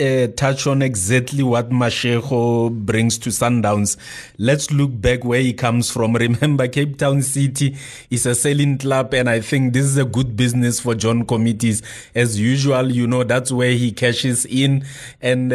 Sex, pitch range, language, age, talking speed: male, 120-140 Hz, English, 30-49, 175 wpm